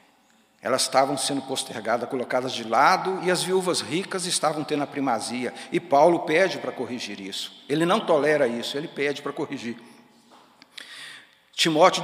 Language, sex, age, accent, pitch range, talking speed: Portuguese, male, 60-79, Brazilian, 135-165 Hz, 150 wpm